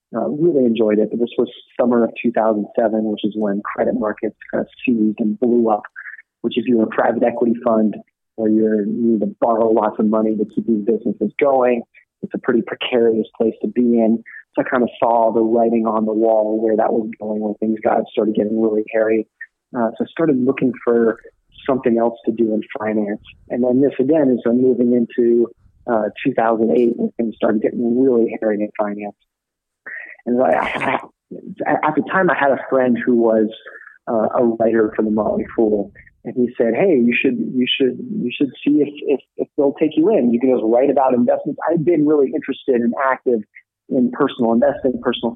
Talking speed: 205 wpm